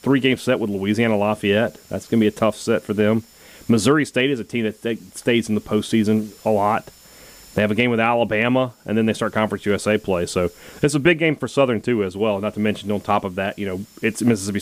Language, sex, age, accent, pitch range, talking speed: English, male, 30-49, American, 105-135 Hz, 250 wpm